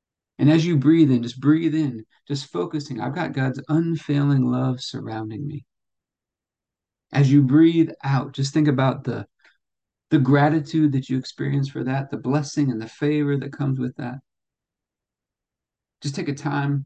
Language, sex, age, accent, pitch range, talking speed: English, male, 40-59, American, 125-150 Hz, 160 wpm